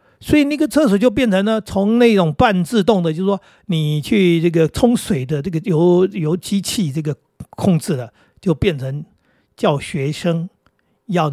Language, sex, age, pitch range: Chinese, male, 50-69, 130-180 Hz